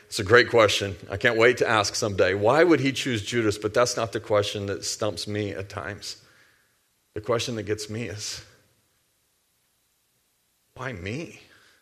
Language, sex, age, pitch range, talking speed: English, male, 40-59, 100-120 Hz, 170 wpm